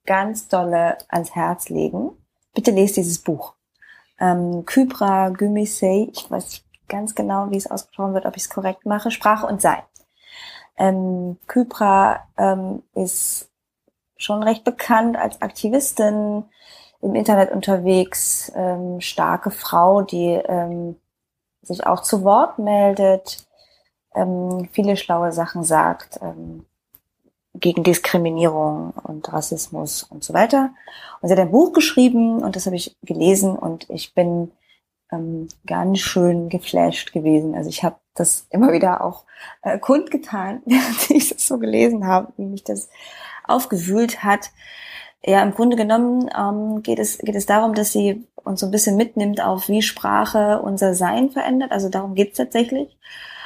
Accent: German